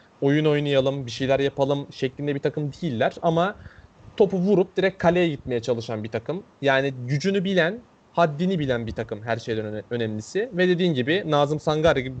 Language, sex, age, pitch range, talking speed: Turkish, male, 30-49, 125-165 Hz, 165 wpm